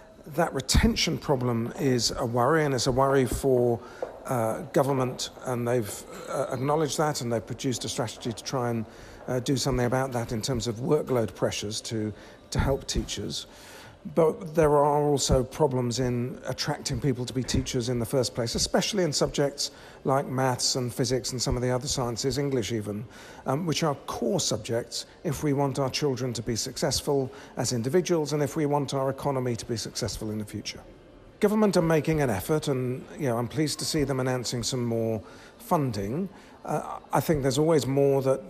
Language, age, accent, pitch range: English, 40-59, British, 125-155 Hz